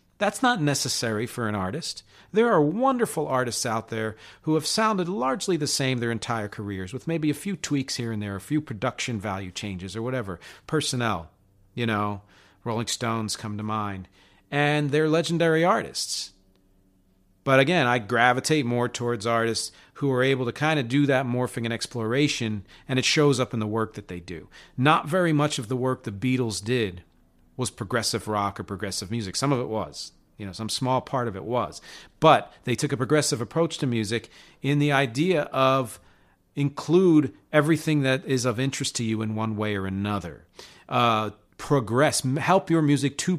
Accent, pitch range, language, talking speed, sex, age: American, 105-145 Hz, English, 185 wpm, male, 40-59